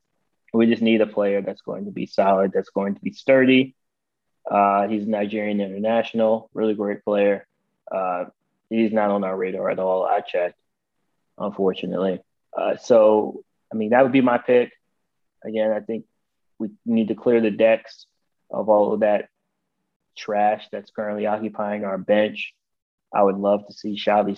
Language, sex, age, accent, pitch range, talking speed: English, male, 20-39, American, 100-115 Hz, 165 wpm